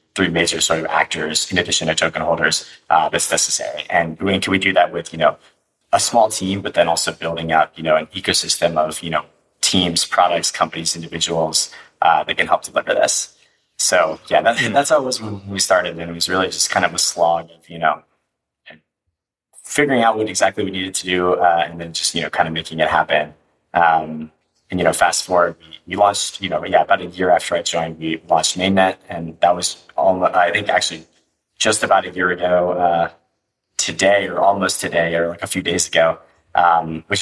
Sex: male